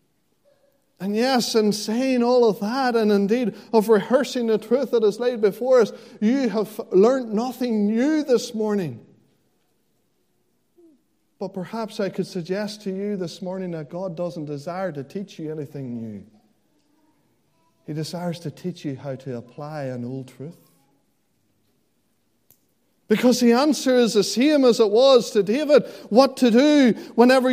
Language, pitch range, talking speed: English, 195-255 Hz, 150 wpm